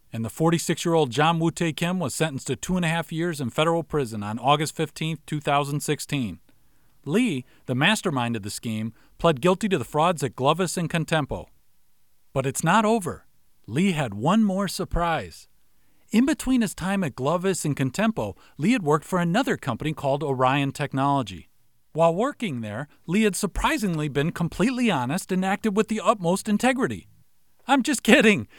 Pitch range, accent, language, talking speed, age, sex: 140-205 Hz, American, English, 170 wpm, 40-59, male